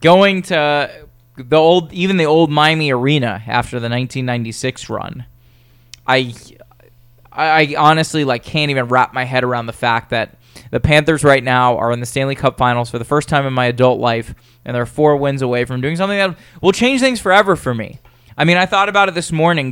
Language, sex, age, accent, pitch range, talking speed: English, male, 20-39, American, 120-155 Hz, 205 wpm